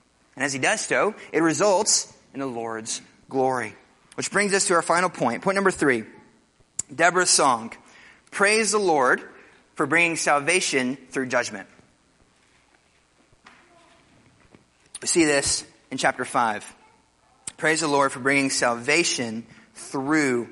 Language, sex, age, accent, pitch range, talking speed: English, male, 30-49, American, 135-195 Hz, 130 wpm